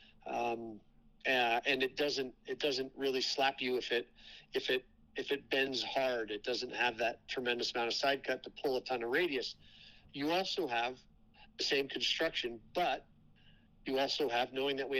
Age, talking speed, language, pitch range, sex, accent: 50-69, 170 wpm, English, 125-150 Hz, male, American